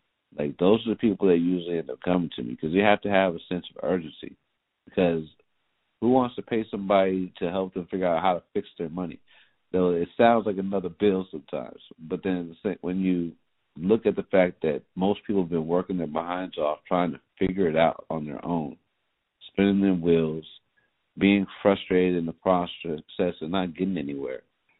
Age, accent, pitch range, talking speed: 50-69, American, 80-95 Hz, 195 wpm